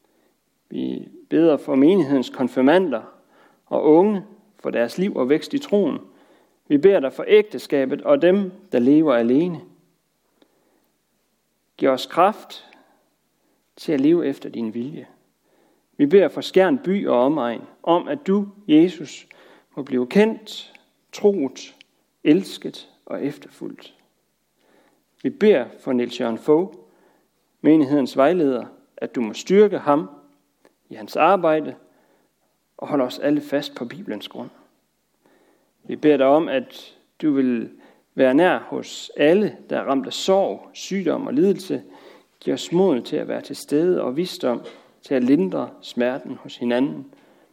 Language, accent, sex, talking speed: Danish, native, male, 140 wpm